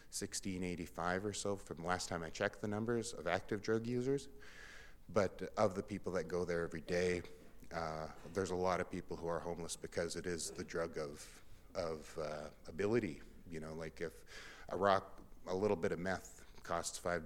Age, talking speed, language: 30-49, 190 wpm, English